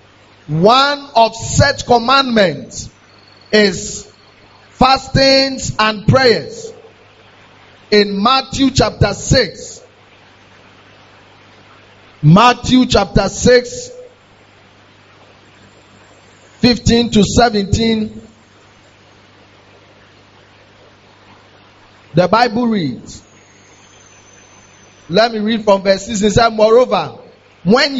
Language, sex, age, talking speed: English, male, 40-59, 65 wpm